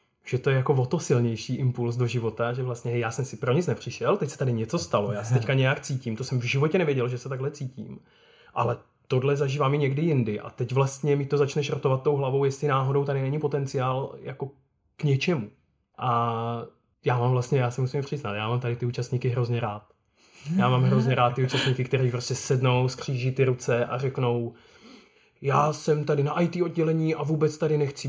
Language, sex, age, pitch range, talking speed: Czech, male, 20-39, 120-145 Hz, 210 wpm